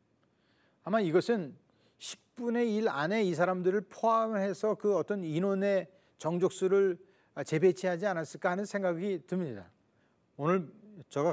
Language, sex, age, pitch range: Korean, male, 40-59, 130-180 Hz